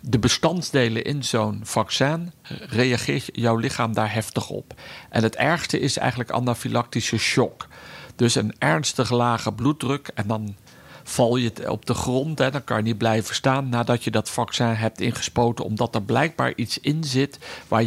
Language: Dutch